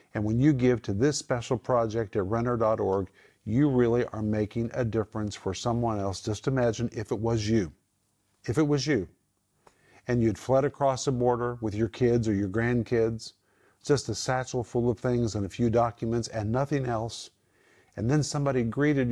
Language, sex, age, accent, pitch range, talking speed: English, male, 50-69, American, 110-130 Hz, 180 wpm